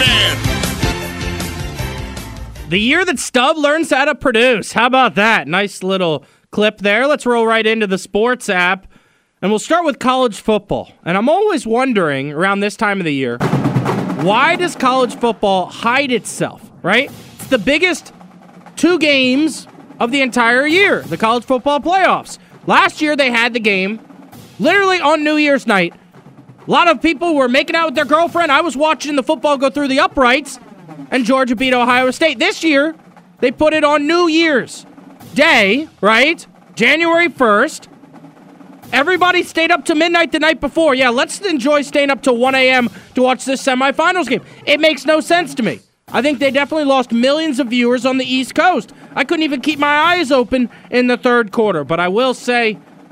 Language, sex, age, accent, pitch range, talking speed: English, male, 30-49, American, 215-305 Hz, 180 wpm